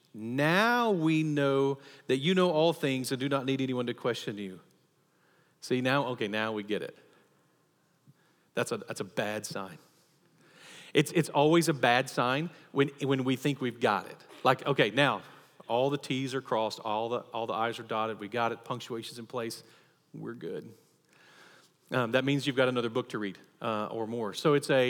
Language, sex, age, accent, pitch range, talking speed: English, male, 40-59, American, 125-155 Hz, 195 wpm